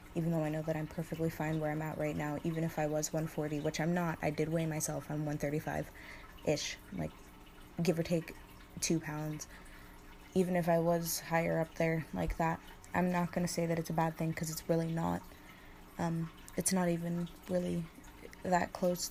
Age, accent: 20-39, American